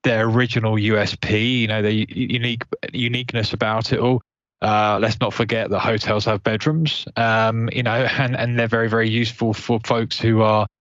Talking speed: 180 wpm